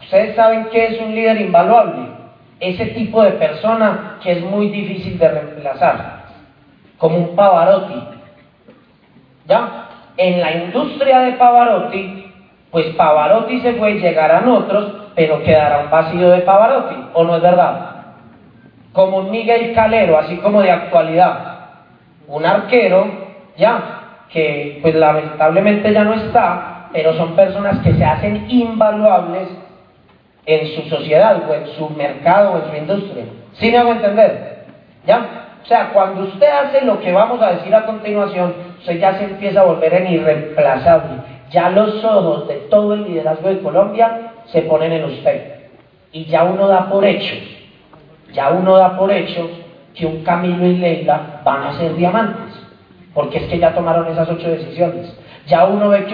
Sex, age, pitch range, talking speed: male, 40-59, 165-210 Hz, 160 wpm